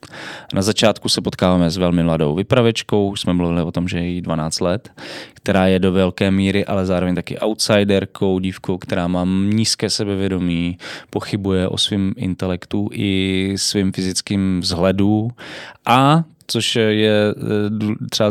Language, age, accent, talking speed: Czech, 20-39, native, 140 wpm